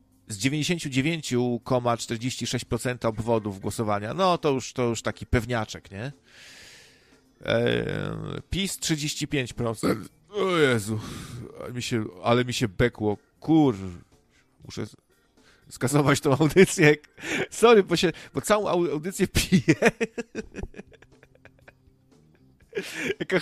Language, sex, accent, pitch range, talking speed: Polish, male, native, 110-155 Hz, 80 wpm